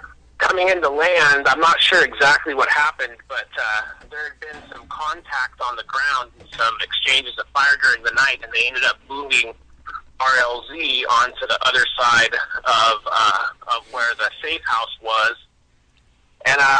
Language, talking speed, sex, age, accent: English, 165 wpm, male, 30-49, American